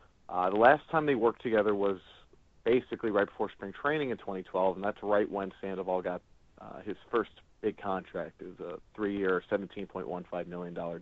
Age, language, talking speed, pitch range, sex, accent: 40-59, English, 180 wpm, 90-105 Hz, male, American